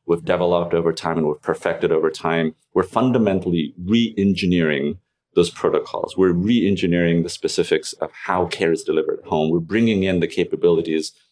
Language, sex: English, male